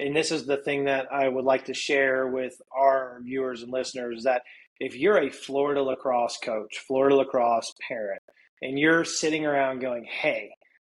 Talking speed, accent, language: 180 wpm, American, English